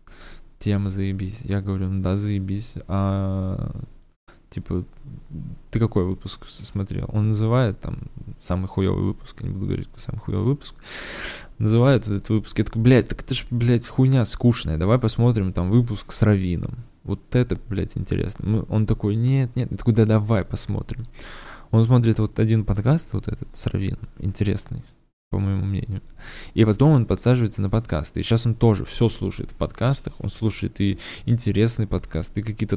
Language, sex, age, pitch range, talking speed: Russian, male, 20-39, 95-120 Hz, 165 wpm